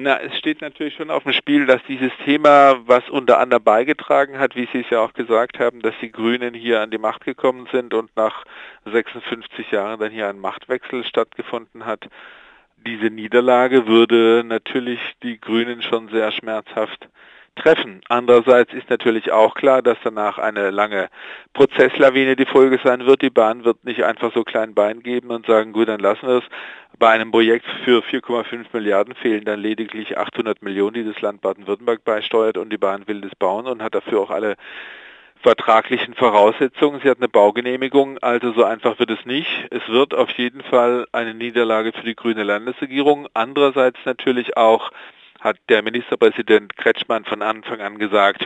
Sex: male